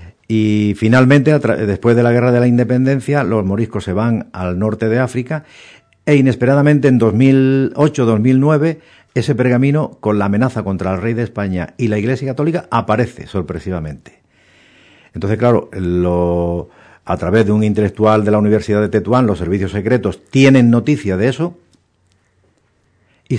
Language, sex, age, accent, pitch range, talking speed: Spanish, male, 50-69, Spanish, 95-125 Hz, 145 wpm